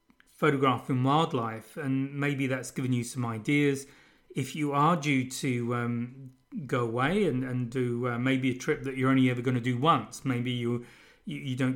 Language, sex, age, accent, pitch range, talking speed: English, male, 30-49, British, 125-145 Hz, 195 wpm